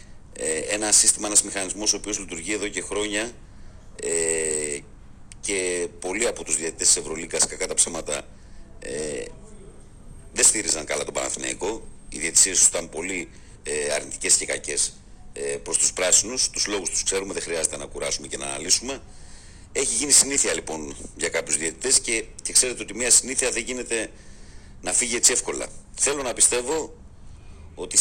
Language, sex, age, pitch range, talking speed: Greek, male, 50-69, 85-110 Hz, 150 wpm